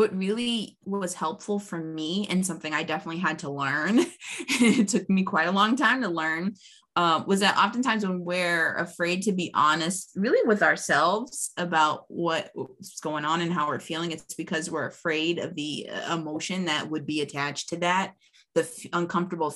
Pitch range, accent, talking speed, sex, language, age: 160-205 Hz, American, 180 wpm, female, English, 20-39